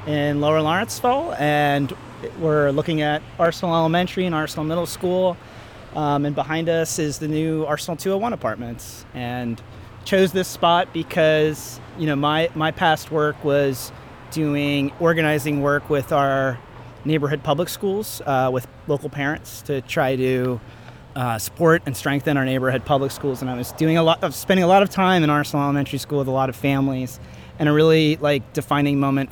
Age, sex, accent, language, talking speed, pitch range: 30-49, male, American, English, 175 wpm, 125-150 Hz